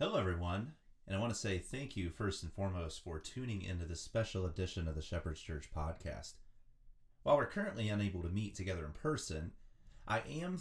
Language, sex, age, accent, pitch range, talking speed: English, male, 30-49, American, 90-120 Hz, 190 wpm